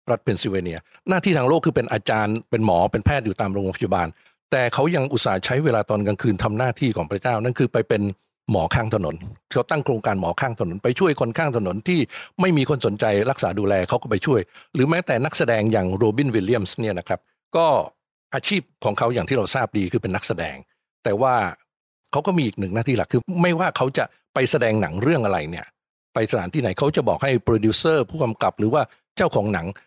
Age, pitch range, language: 60-79, 100-130 Hz, English